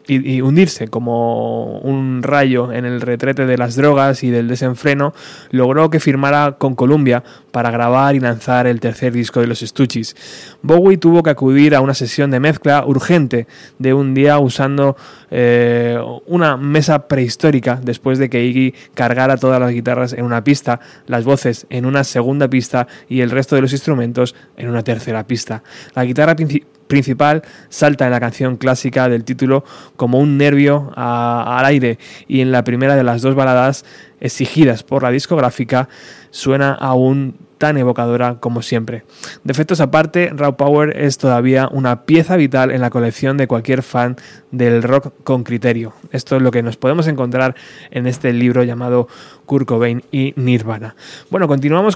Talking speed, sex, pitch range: 165 wpm, male, 120-145 Hz